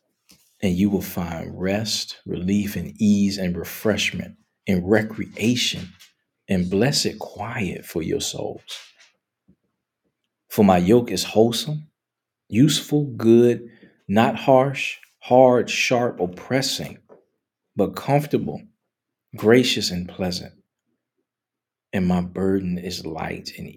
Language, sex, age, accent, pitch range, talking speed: English, male, 40-59, American, 95-145 Hz, 105 wpm